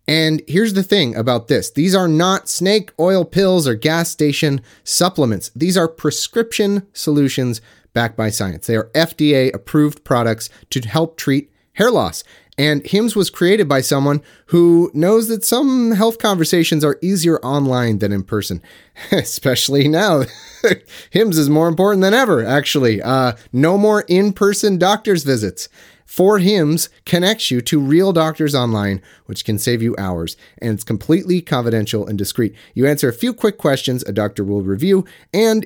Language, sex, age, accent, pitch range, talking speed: English, male, 30-49, American, 115-185 Hz, 160 wpm